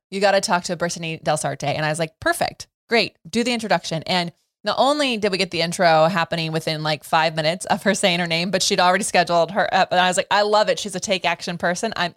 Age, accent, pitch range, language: 20-39, American, 170-205 Hz, English